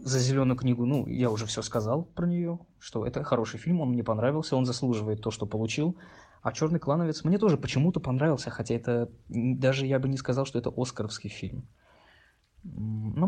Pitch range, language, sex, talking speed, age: 110-130 Hz, Russian, male, 185 wpm, 20-39